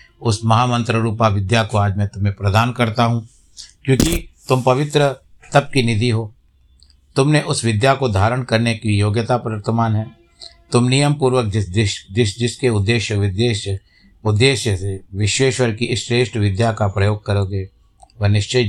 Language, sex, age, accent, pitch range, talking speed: Hindi, male, 60-79, native, 100-120 Hz, 155 wpm